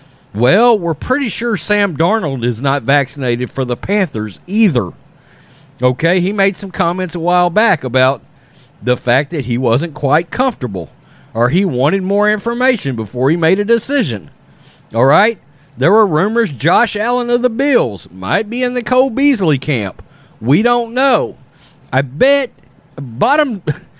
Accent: American